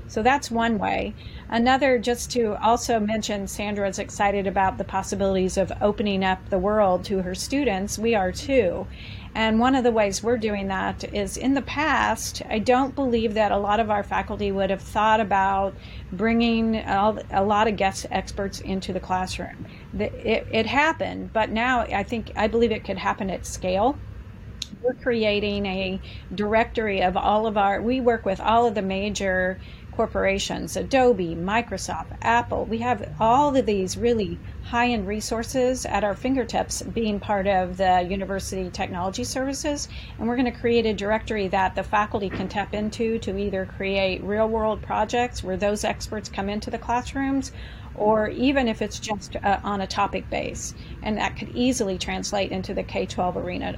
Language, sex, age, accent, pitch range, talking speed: English, female, 40-59, American, 195-235 Hz, 170 wpm